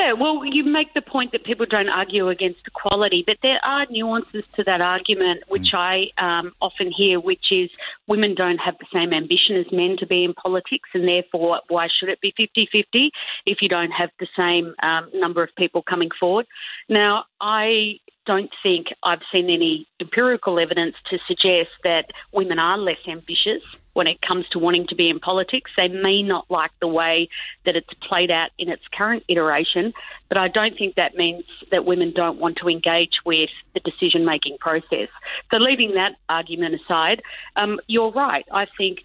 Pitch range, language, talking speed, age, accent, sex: 170-210 Hz, English, 185 wpm, 40-59, Australian, female